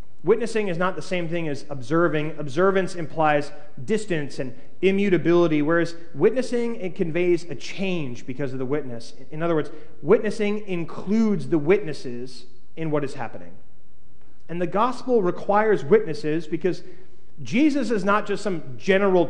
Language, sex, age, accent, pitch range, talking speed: English, male, 30-49, American, 150-200 Hz, 145 wpm